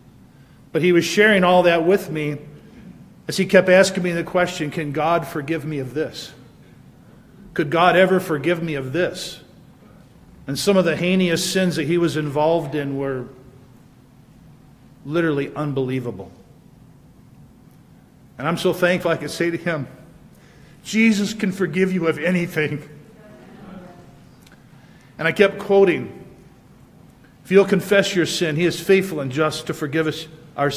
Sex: male